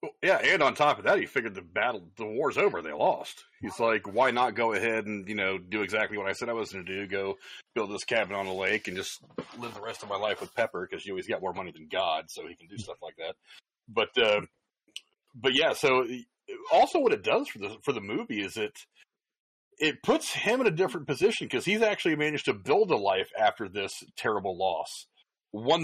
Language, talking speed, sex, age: English, 240 wpm, male, 30-49